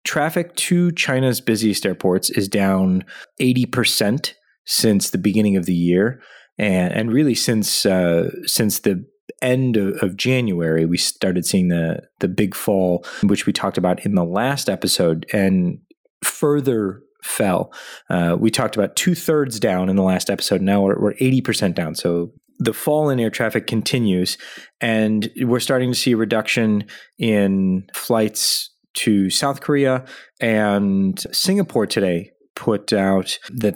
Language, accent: English, American